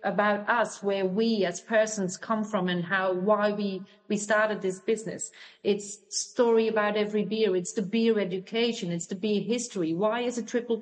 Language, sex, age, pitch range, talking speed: English, female, 40-59, 210-260 Hz, 185 wpm